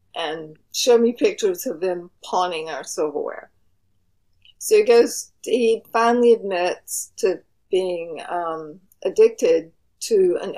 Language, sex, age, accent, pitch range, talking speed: English, female, 50-69, American, 165-260 Hz, 120 wpm